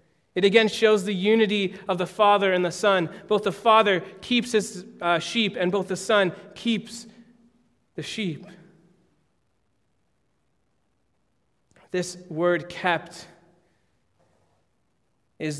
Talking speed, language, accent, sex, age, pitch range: 110 wpm, English, American, male, 30-49, 150-180 Hz